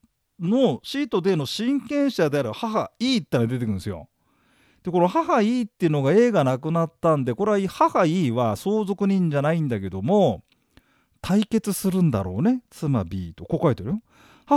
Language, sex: Japanese, male